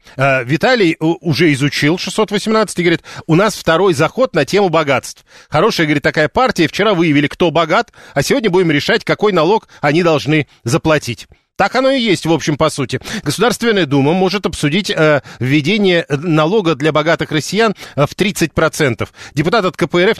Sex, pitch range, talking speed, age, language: male, 145-185 Hz, 155 wpm, 40-59, Russian